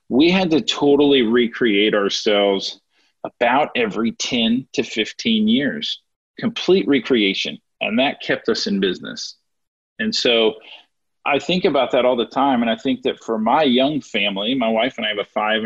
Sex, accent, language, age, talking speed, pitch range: male, American, English, 40-59, 170 wpm, 115-160 Hz